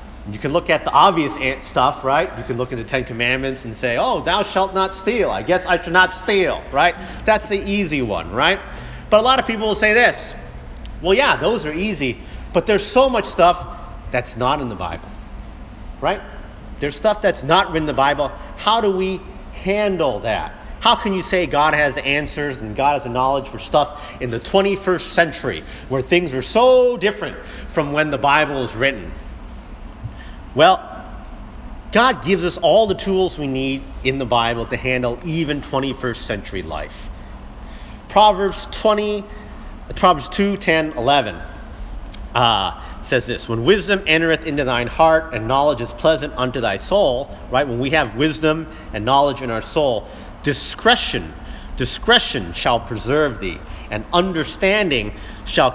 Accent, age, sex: American, 40-59, male